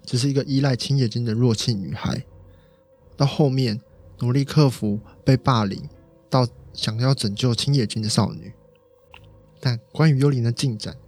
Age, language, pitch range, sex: 20-39, Chinese, 115-145 Hz, male